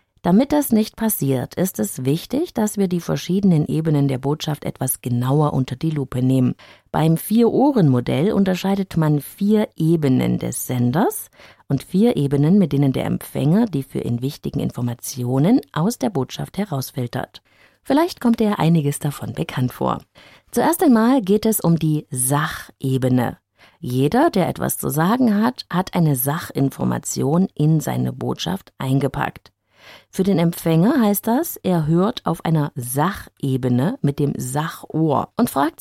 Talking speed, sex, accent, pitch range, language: 145 wpm, female, German, 130-205 Hz, German